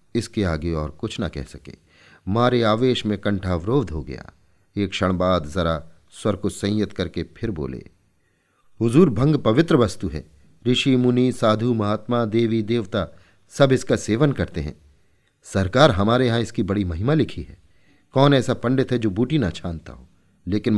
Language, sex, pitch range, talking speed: Hindi, male, 90-115 Hz, 170 wpm